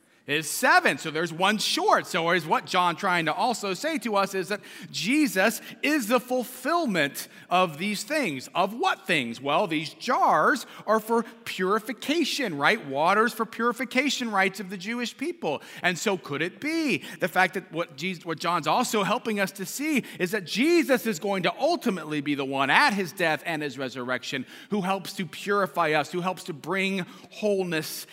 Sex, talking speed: male, 185 wpm